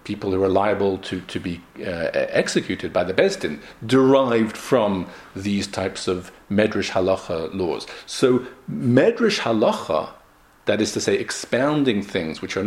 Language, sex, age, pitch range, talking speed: English, male, 50-69, 100-170 Hz, 145 wpm